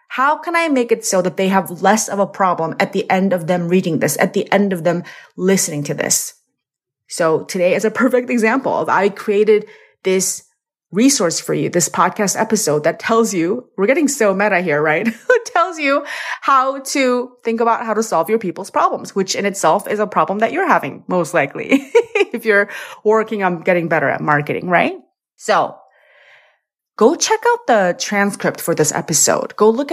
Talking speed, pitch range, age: 195 wpm, 175-230 Hz, 30-49